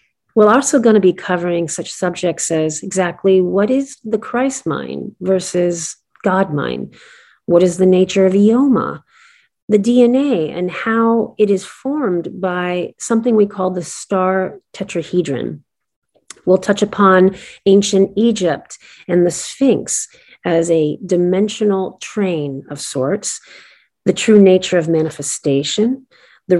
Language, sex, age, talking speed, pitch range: English, female, 40-59, 130 wpm, 170-210 Hz